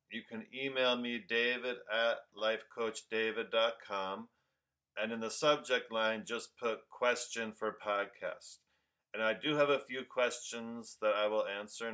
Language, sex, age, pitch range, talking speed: English, male, 40-59, 105-120 Hz, 140 wpm